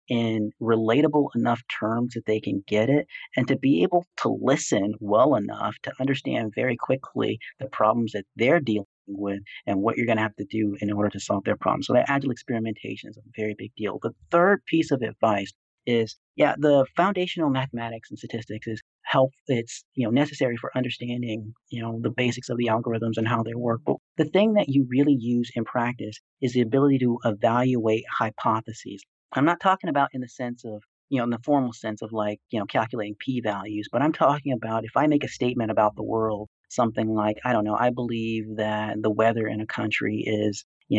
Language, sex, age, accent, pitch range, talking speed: English, male, 40-59, American, 110-130 Hz, 210 wpm